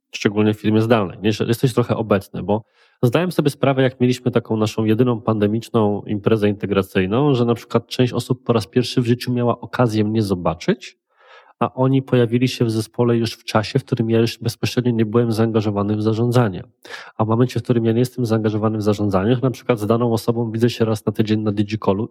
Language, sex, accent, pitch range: Polish, male, native, 110-130 Hz